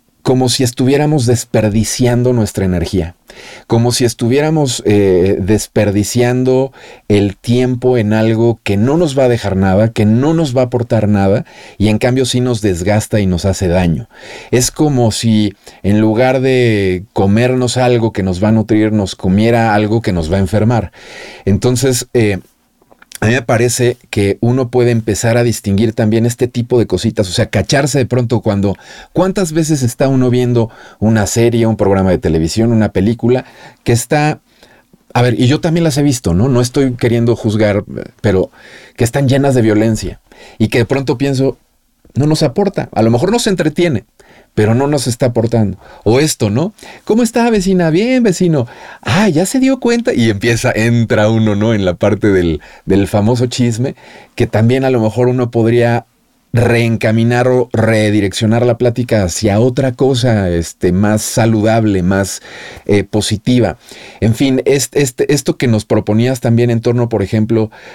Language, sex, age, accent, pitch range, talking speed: Spanish, male, 40-59, Mexican, 105-130 Hz, 170 wpm